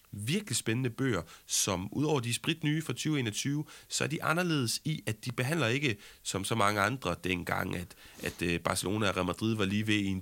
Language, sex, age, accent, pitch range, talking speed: Danish, male, 30-49, native, 100-135 Hz, 205 wpm